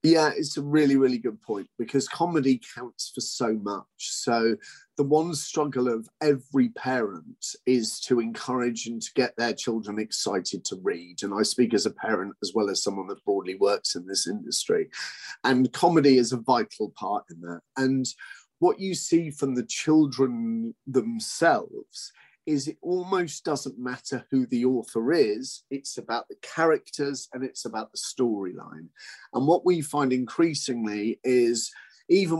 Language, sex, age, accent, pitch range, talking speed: English, male, 30-49, British, 120-160 Hz, 165 wpm